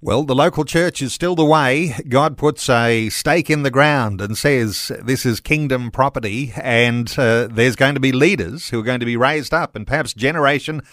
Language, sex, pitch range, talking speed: English, male, 115-145 Hz, 210 wpm